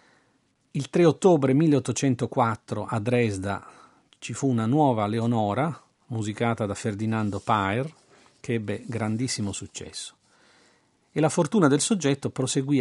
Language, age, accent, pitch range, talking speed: Italian, 40-59, native, 115-150 Hz, 115 wpm